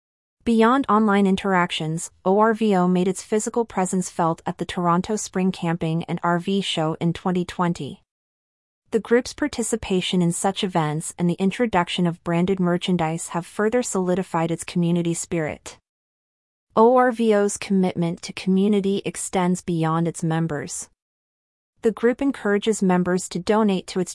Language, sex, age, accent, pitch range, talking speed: English, female, 30-49, American, 170-205 Hz, 130 wpm